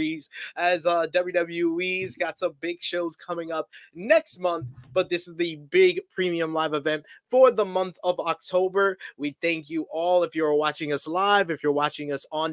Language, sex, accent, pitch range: English, male, American, 155-185 Hz